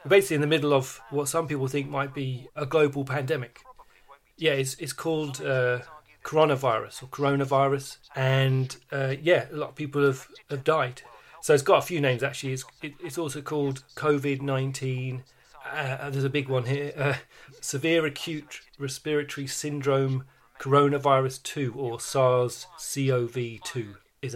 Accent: British